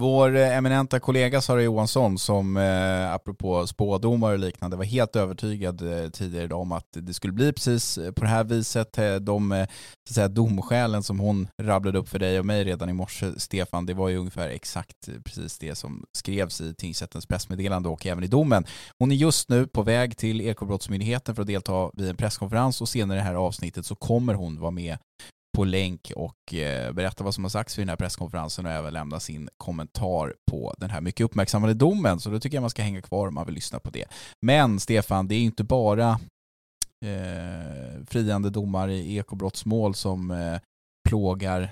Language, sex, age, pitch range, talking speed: English, male, 20-39, 90-110 Hz, 190 wpm